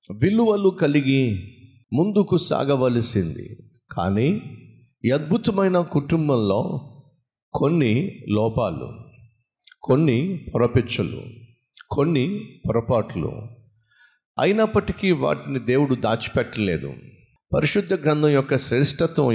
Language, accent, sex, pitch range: Telugu, native, male, 120-165 Hz